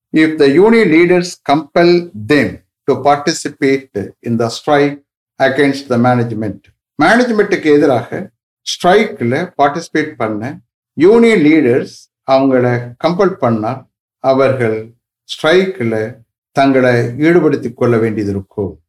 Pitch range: 115-155 Hz